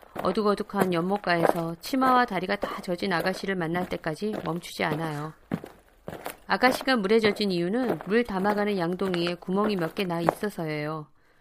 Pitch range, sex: 170-225 Hz, female